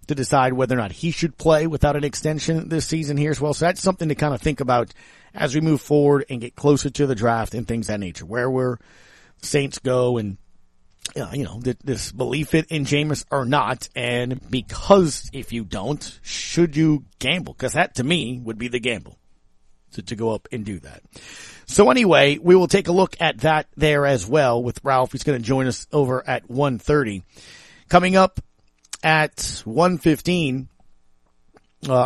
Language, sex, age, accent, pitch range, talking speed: English, male, 40-59, American, 120-155 Hz, 195 wpm